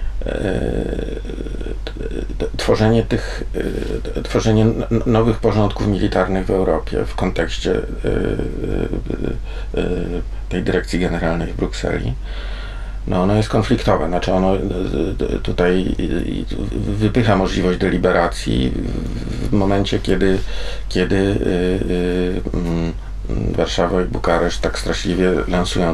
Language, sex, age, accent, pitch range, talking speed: Polish, male, 50-69, native, 85-110 Hz, 100 wpm